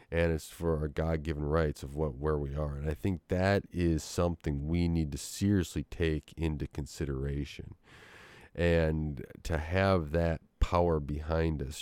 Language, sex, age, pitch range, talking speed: English, male, 30-49, 75-85 Hz, 155 wpm